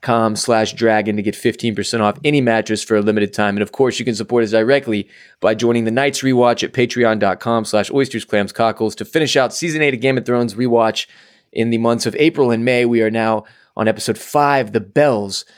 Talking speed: 220 wpm